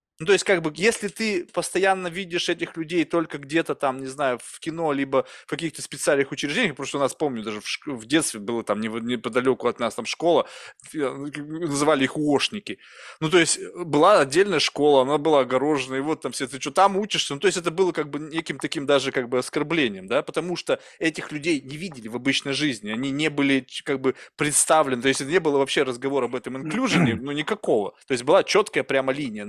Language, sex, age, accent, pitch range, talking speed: Russian, male, 20-39, native, 135-165 Hz, 210 wpm